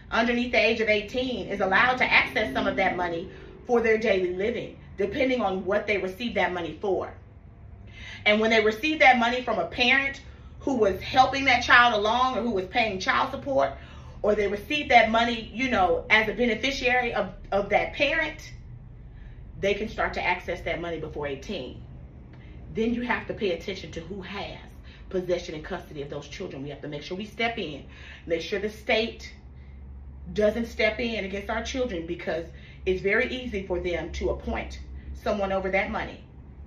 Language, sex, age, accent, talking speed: English, female, 30-49, American, 185 wpm